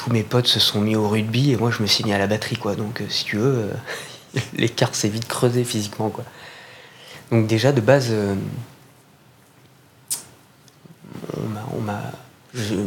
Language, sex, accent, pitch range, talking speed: French, male, French, 105-135 Hz, 185 wpm